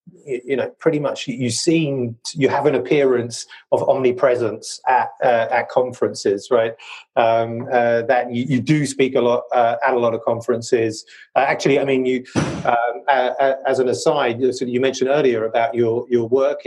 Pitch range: 115-130 Hz